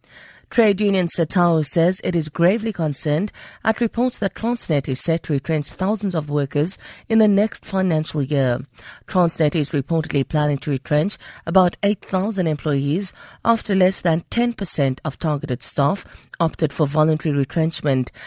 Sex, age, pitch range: female, 50-69, 145-195 Hz